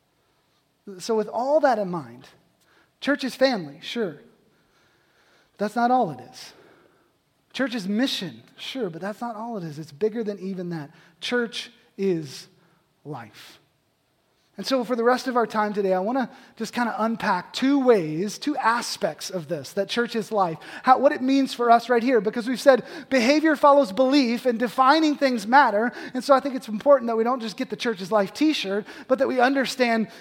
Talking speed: 185 wpm